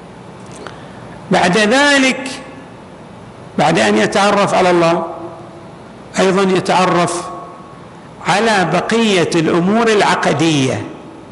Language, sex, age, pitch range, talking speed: Arabic, male, 50-69, 165-210 Hz, 70 wpm